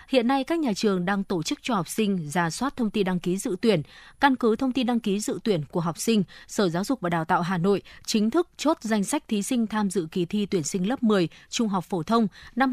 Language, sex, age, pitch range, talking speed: Vietnamese, female, 20-39, 180-230 Hz, 275 wpm